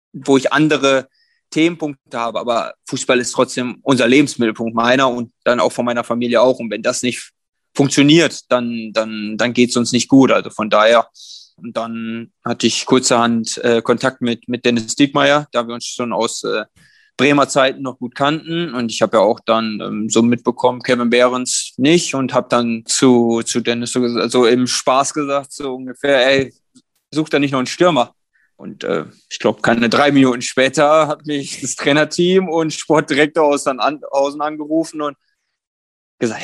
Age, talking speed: 20-39, 180 wpm